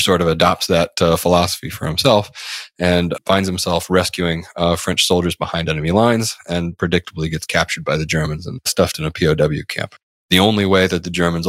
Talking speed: 195 wpm